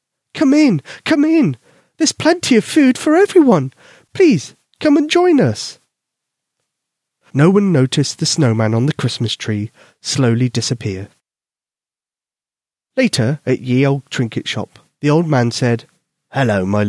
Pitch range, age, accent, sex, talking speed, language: 115-155 Hz, 30-49, British, male, 135 wpm, English